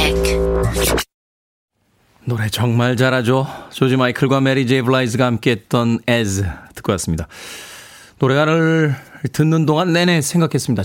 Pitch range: 120-160 Hz